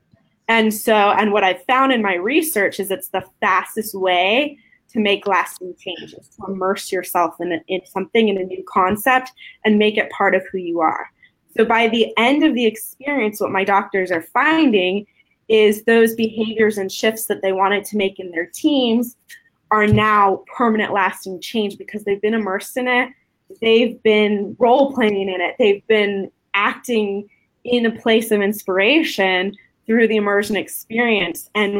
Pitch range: 190-225 Hz